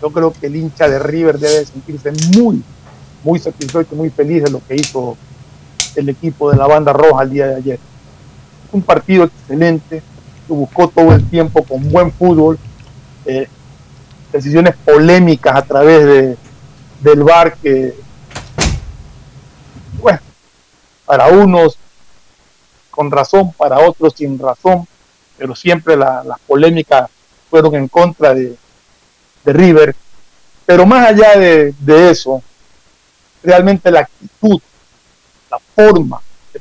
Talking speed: 130 wpm